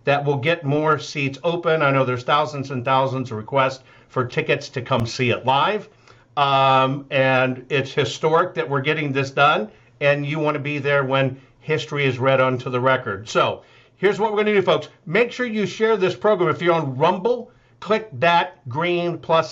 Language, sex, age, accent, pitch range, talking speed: English, male, 50-69, American, 130-175 Hz, 200 wpm